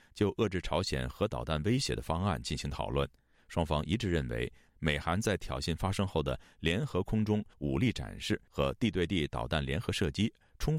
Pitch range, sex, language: 65-95 Hz, male, Chinese